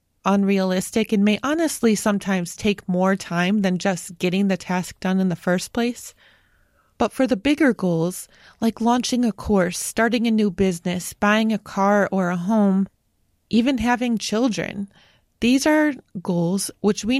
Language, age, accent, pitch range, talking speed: English, 30-49, American, 180-215 Hz, 155 wpm